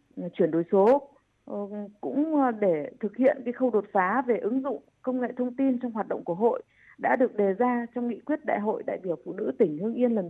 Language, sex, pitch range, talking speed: Vietnamese, female, 210-275 Hz, 235 wpm